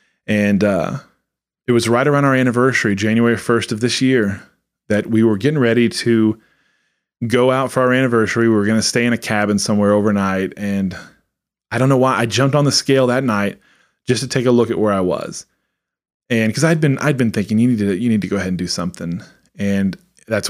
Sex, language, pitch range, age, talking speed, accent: male, English, 100-125 Hz, 20-39, 220 wpm, American